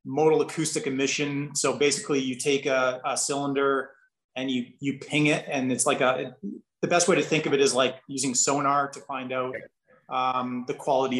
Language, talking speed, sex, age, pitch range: English, 195 wpm, male, 30-49, 130-155 Hz